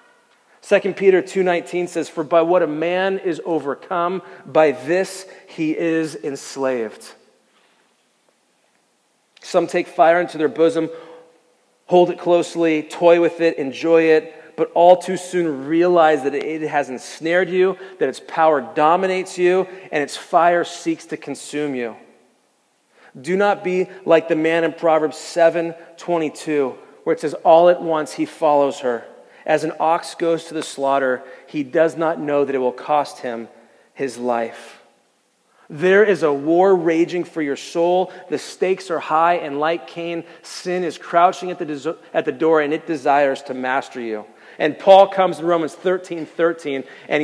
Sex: male